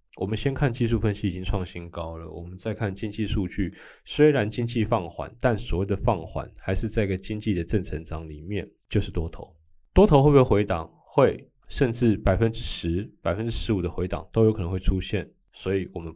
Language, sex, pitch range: Chinese, male, 90-120 Hz